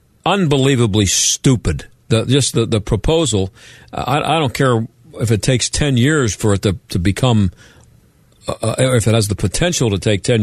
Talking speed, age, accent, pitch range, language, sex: 175 wpm, 50-69, American, 105-135 Hz, English, male